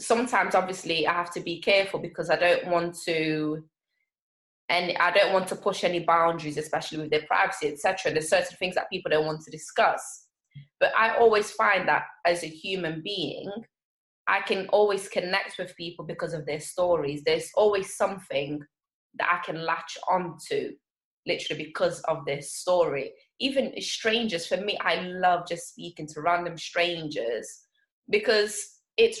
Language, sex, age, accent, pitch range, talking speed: English, female, 20-39, British, 165-215 Hz, 165 wpm